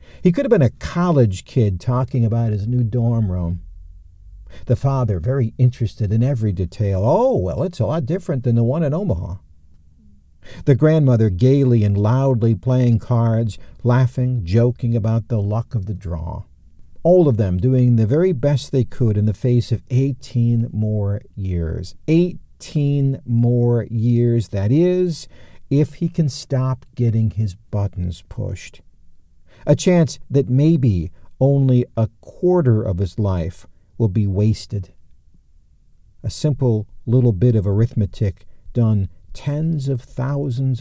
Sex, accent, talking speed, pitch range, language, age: male, American, 145 wpm, 95-125 Hz, English, 50-69